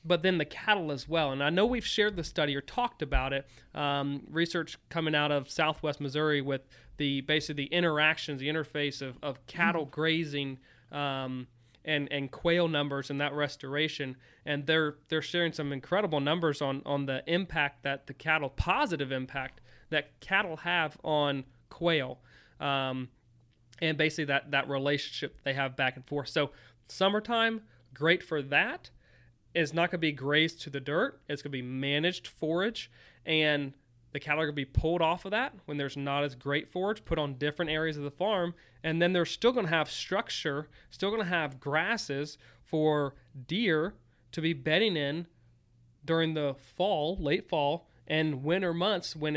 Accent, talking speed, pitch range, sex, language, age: American, 180 wpm, 140-165 Hz, male, English, 30-49